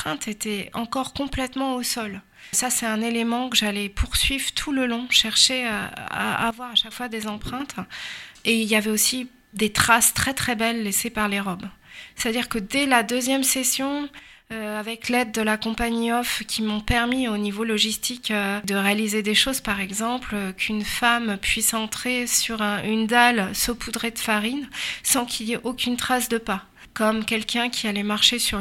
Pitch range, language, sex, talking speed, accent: 205-240 Hz, French, female, 185 wpm, French